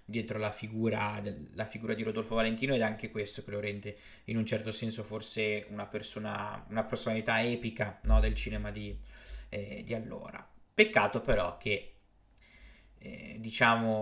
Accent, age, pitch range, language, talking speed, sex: native, 20-39, 105-115 Hz, Italian, 160 wpm, male